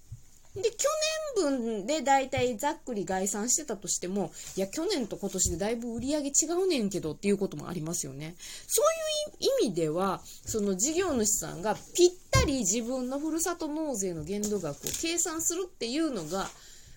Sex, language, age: female, Japanese, 20-39